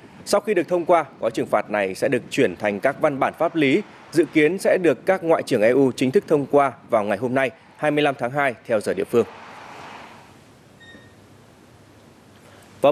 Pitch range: 130-170 Hz